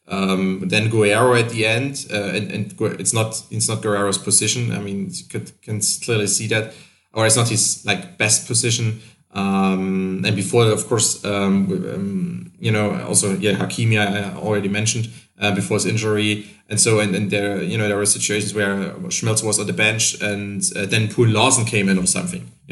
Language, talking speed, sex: English, 200 wpm, male